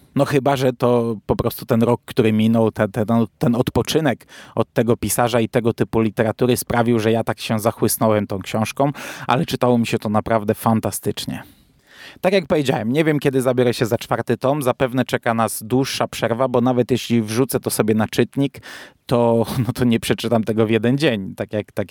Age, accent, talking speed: 20-39, native, 190 wpm